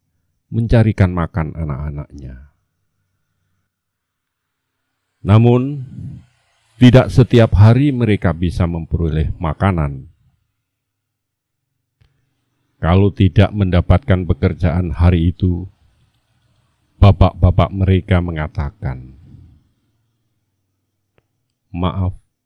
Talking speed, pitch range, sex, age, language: 55 wpm, 85-115 Hz, male, 50-69, Indonesian